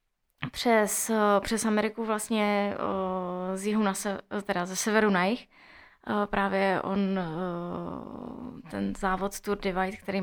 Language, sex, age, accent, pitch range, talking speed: Czech, female, 20-39, native, 190-215 Hz, 115 wpm